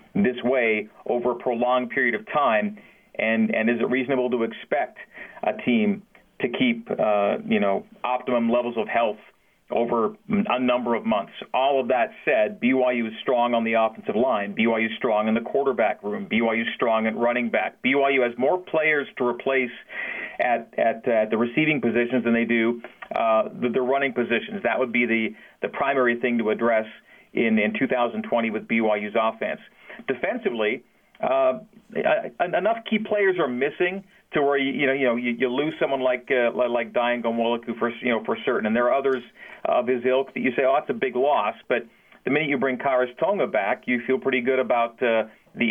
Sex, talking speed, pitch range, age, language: male, 190 wpm, 115-135 Hz, 40-59, English